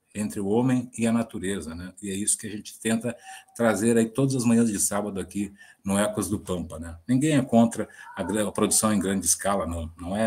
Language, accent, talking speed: Portuguese, Brazilian, 220 wpm